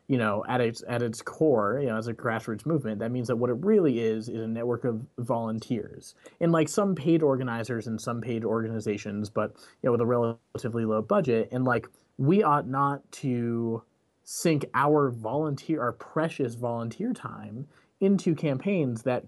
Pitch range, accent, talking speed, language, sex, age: 110-140 Hz, American, 180 wpm, English, male, 30-49